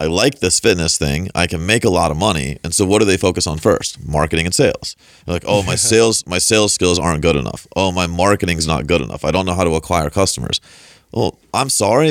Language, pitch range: English, 80-95 Hz